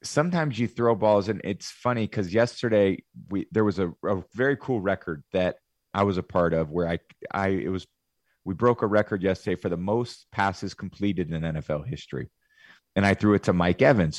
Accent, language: American, English